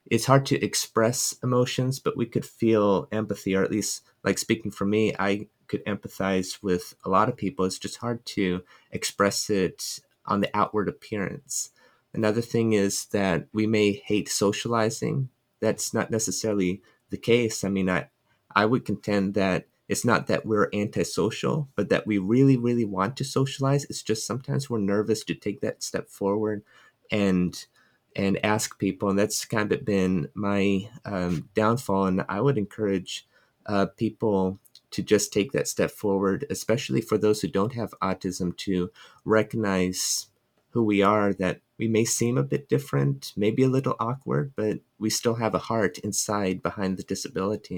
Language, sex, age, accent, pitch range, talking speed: English, male, 30-49, American, 95-115 Hz, 170 wpm